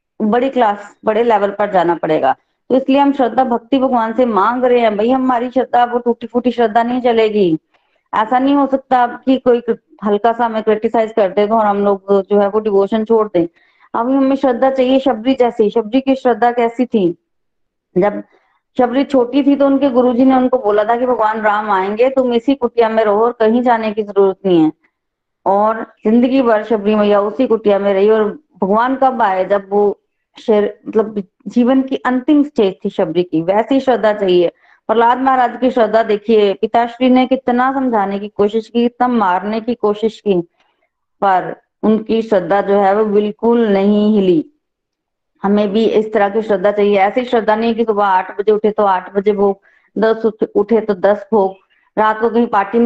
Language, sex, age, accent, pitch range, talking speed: Hindi, female, 20-39, native, 205-245 Hz, 175 wpm